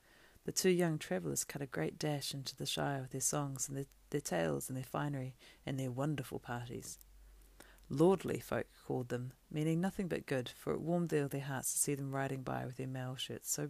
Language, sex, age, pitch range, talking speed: English, female, 40-59, 130-155 Hz, 215 wpm